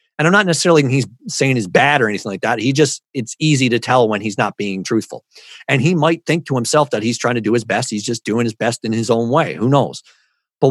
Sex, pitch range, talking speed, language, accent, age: male, 120-150 Hz, 270 wpm, English, American, 40-59